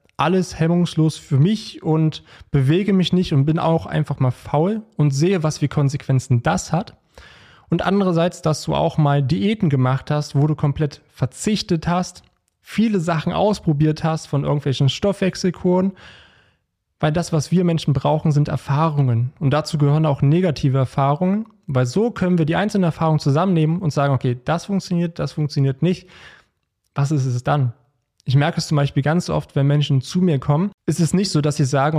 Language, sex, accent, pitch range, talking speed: German, male, German, 135-165 Hz, 180 wpm